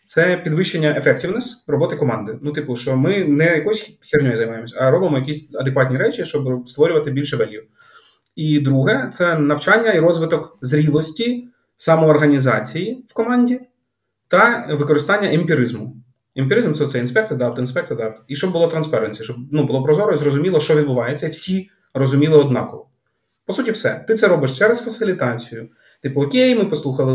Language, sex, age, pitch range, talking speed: Ukrainian, male, 30-49, 135-190 Hz, 155 wpm